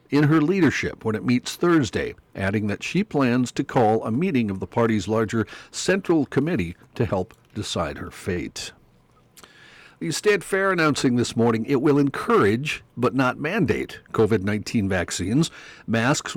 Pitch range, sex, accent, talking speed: 110-135 Hz, male, American, 150 wpm